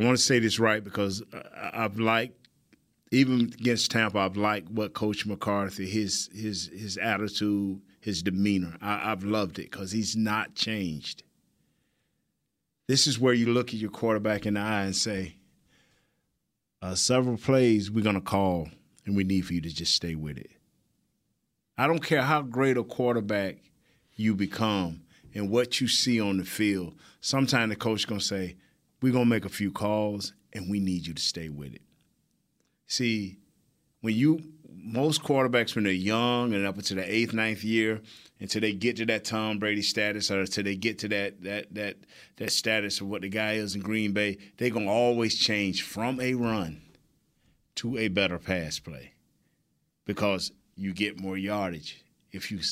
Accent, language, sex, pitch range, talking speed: American, English, male, 100-115 Hz, 180 wpm